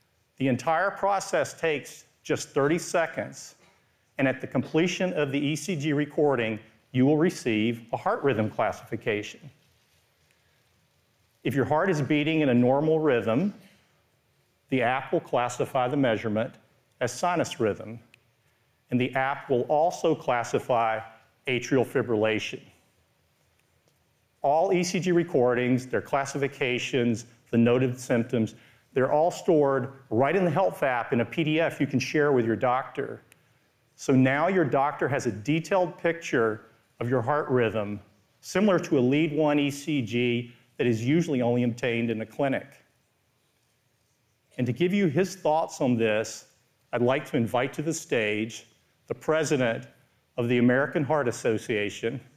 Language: English